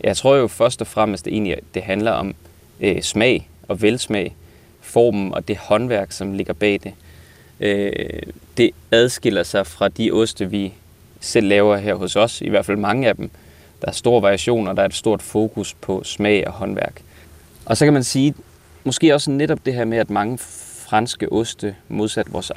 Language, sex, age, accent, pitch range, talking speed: Danish, male, 20-39, native, 95-115 Hz, 190 wpm